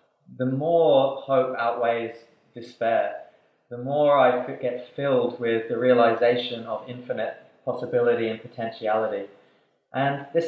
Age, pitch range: 20-39, 115-140 Hz